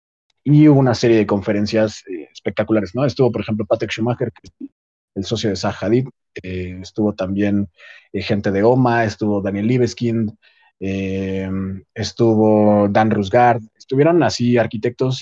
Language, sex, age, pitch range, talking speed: Spanish, male, 30-49, 105-125 Hz, 145 wpm